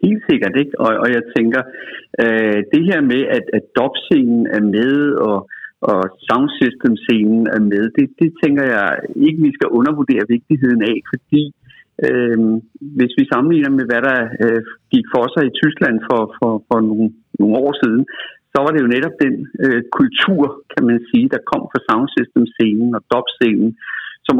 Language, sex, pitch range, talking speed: Danish, male, 110-155 Hz, 175 wpm